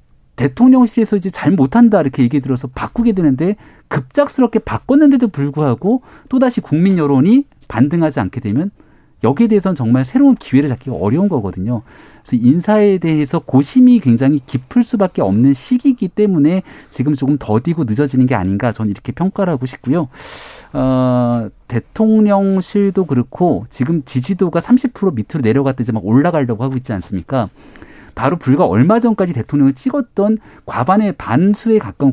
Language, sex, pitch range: Korean, male, 125-205 Hz